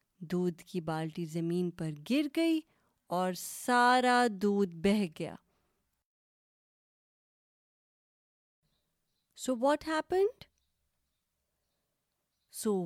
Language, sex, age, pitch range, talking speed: Urdu, female, 30-49, 185-235 Hz, 75 wpm